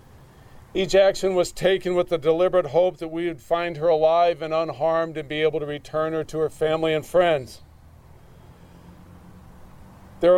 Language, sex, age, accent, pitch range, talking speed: English, male, 40-59, American, 140-165 Hz, 160 wpm